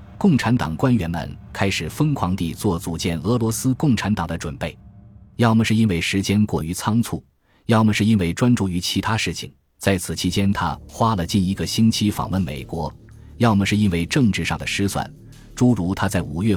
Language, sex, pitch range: Chinese, male, 85-110 Hz